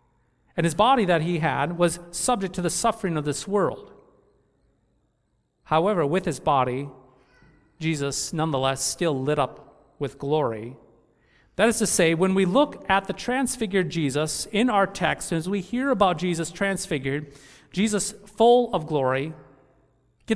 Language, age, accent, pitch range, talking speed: English, 40-59, American, 130-195 Hz, 145 wpm